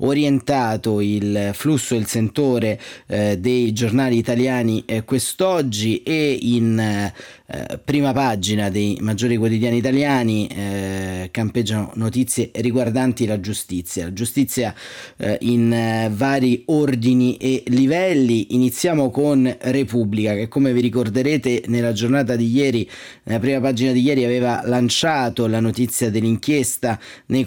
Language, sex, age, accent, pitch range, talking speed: Italian, male, 30-49, native, 115-130 Hz, 125 wpm